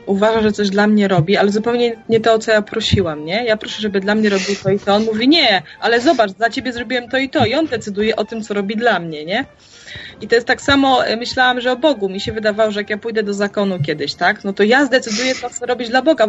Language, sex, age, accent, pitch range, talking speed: Polish, female, 20-39, native, 200-260 Hz, 275 wpm